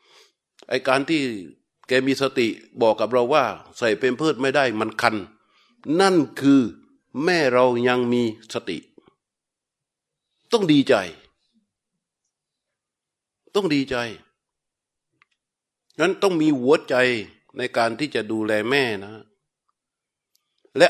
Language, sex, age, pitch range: Thai, male, 60-79, 120-165 Hz